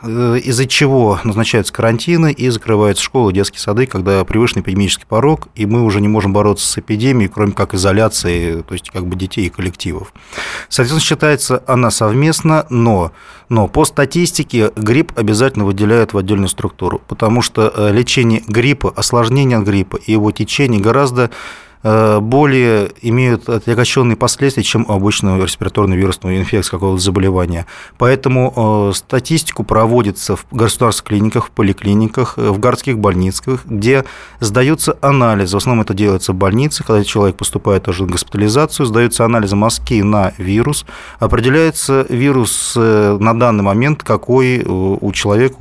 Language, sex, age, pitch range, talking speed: Russian, male, 20-39, 100-130 Hz, 135 wpm